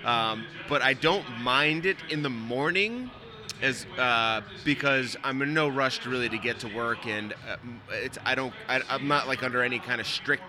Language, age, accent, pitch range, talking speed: English, 30-49, American, 120-155 Hz, 200 wpm